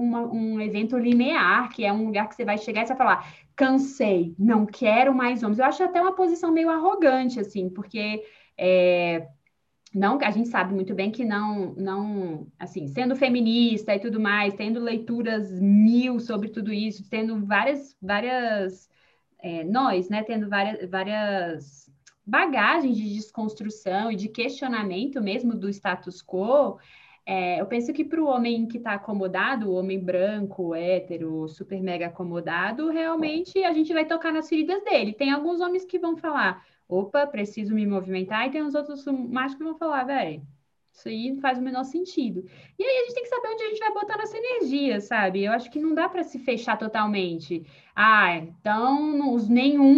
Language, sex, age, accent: Portuguese, female, 20-39, Brazilian